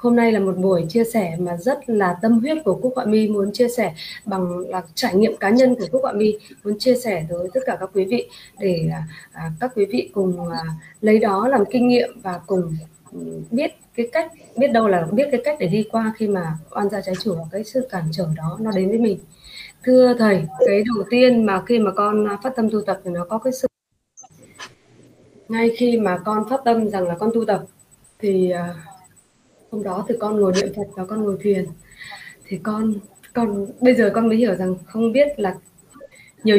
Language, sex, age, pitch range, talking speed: Vietnamese, female, 20-39, 185-235 Hz, 220 wpm